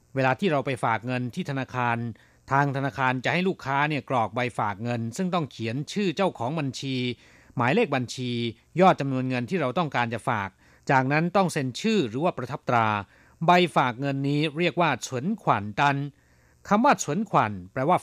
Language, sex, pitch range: Thai, male, 125-180 Hz